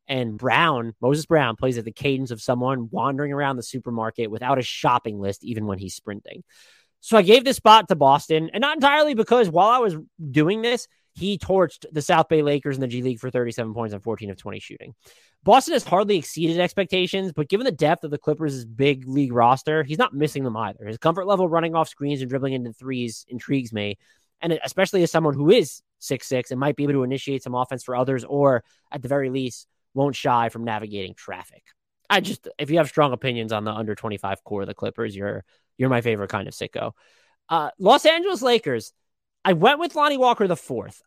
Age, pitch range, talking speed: 20-39, 125-175 Hz, 215 wpm